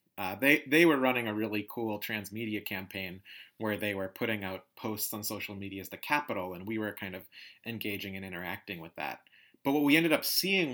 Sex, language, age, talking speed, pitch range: male, English, 30-49, 210 wpm, 105-120 Hz